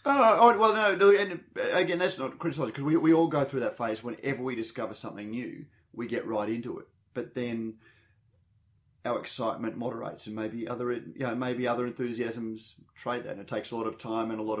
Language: English